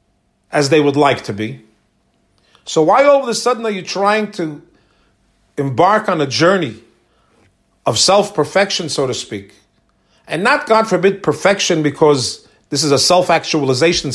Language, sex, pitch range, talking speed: English, male, 135-195 Hz, 150 wpm